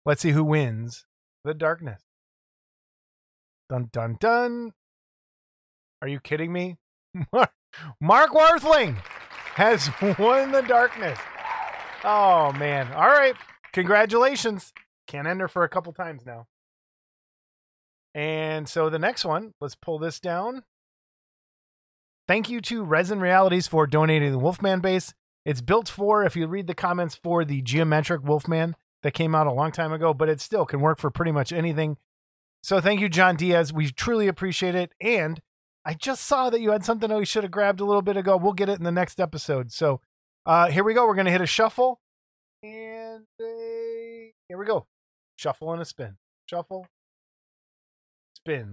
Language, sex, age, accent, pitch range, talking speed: English, male, 20-39, American, 150-215 Hz, 165 wpm